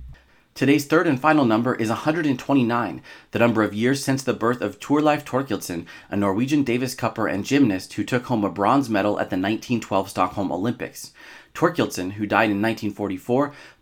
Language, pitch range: English, 105-135 Hz